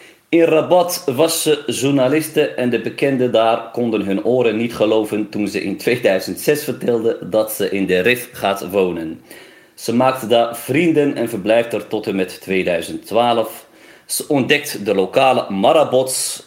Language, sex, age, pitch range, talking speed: Dutch, male, 40-59, 100-145 Hz, 155 wpm